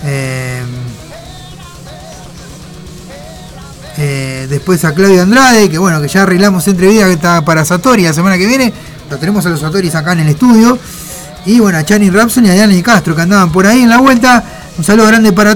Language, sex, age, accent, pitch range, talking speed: Spanish, male, 20-39, Argentinian, 170-220 Hz, 185 wpm